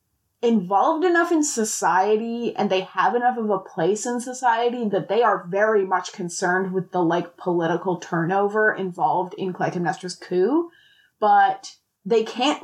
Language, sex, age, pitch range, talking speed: English, female, 20-39, 185-230 Hz, 145 wpm